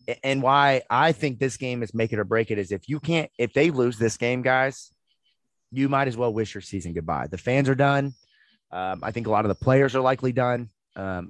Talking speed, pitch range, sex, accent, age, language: 245 wpm, 115-150 Hz, male, American, 30-49, English